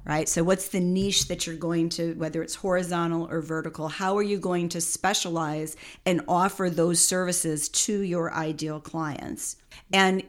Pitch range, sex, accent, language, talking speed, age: 160-195 Hz, female, American, English, 170 wpm, 40-59